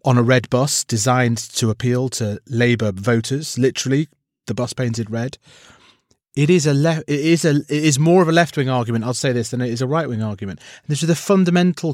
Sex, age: male, 30-49